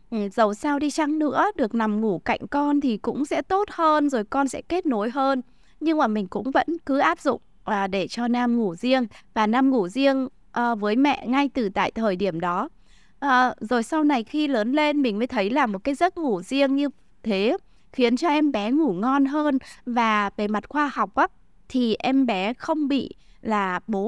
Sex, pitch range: female, 210-285 Hz